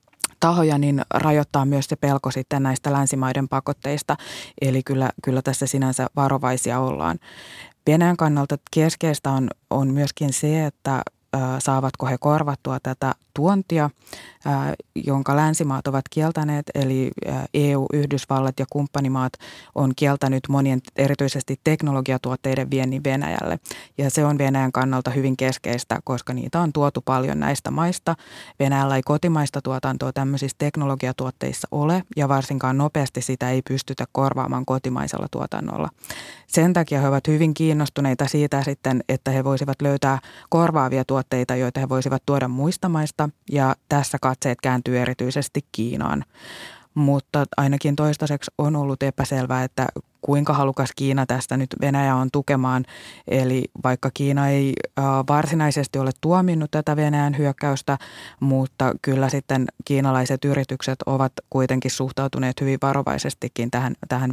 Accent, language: native, Finnish